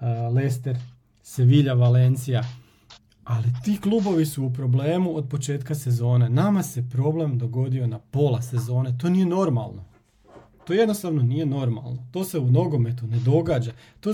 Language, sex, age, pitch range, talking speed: Croatian, male, 40-59, 125-160 Hz, 140 wpm